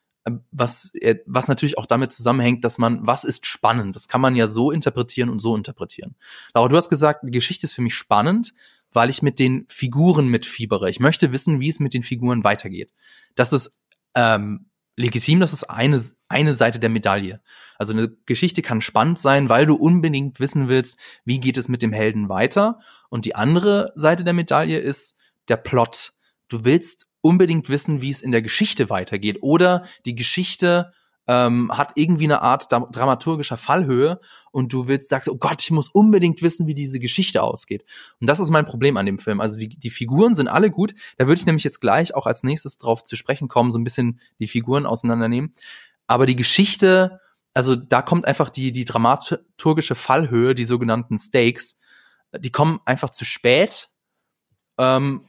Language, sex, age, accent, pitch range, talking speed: German, male, 30-49, German, 120-155 Hz, 185 wpm